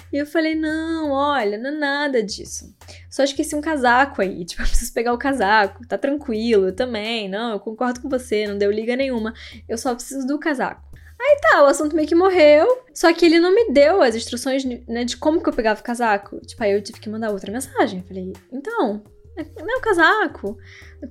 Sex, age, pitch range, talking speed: female, 10-29, 205-275 Hz, 215 wpm